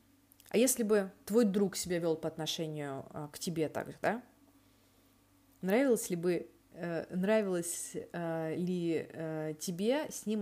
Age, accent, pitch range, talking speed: 20-39, native, 165-210 Hz, 120 wpm